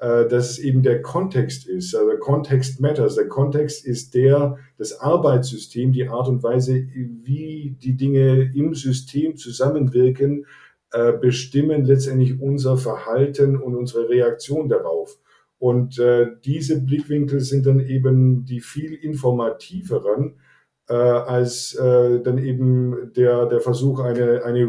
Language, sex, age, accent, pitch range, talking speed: German, male, 50-69, German, 120-140 Hz, 130 wpm